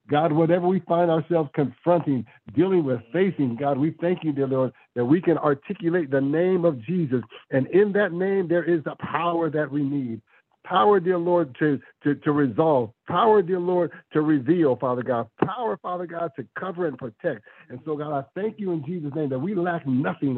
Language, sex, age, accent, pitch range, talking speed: English, male, 60-79, American, 135-180 Hz, 200 wpm